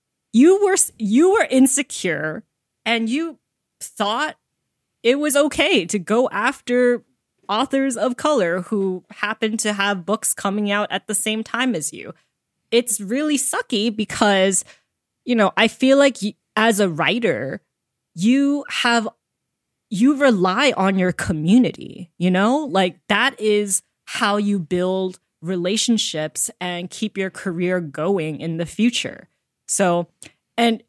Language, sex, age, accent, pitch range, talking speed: English, female, 20-39, American, 180-240 Hz, 130 wpm